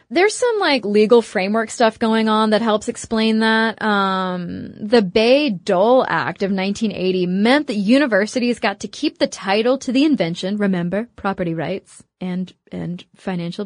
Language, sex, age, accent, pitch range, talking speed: English, female, 20-39, American, 195-245 Hz, 160 wpm